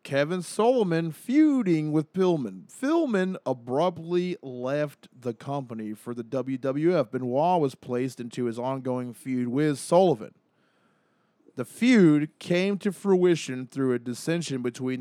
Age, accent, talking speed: 20-39, American, 125 wpm